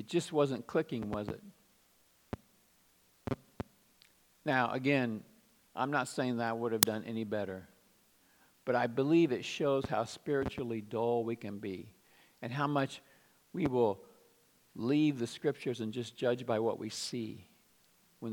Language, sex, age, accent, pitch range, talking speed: English, male, 50-69, American, 120-175 Hz, 145 wpm